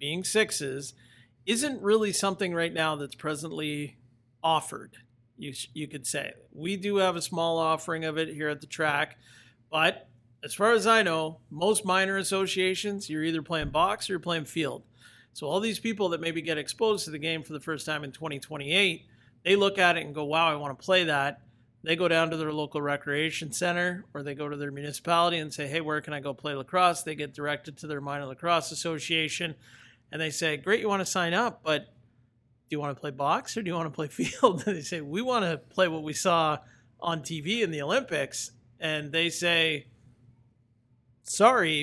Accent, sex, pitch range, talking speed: American, male, 145-180 Hz, 210 wpm